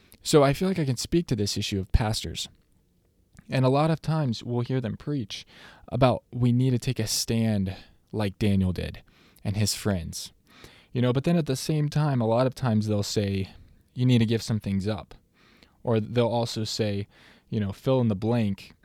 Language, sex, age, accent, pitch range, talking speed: English, male, 20-39, American, 100-125 Hz, 205 wpm